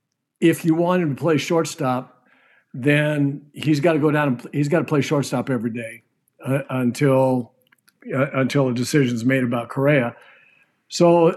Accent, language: American, English